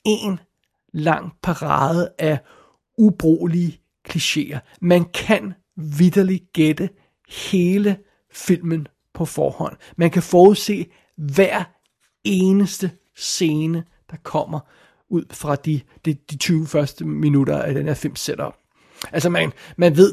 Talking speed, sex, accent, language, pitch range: 115 wpm, male, native, Danish, 155-180 Hz